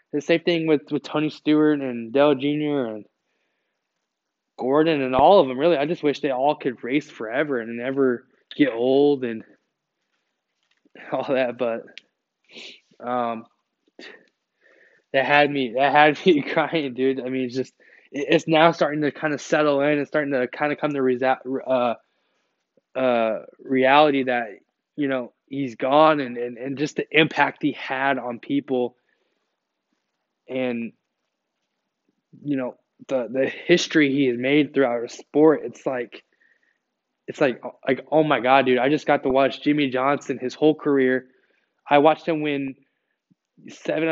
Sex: male